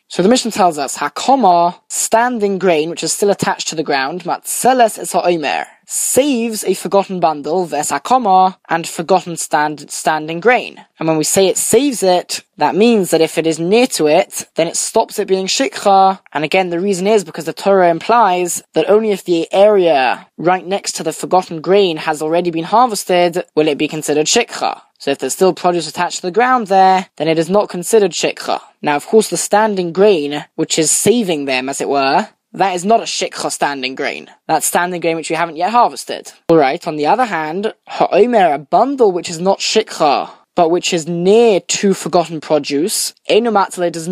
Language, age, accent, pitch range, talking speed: English, 10-29, British, 165-200 Hz, 190 wpm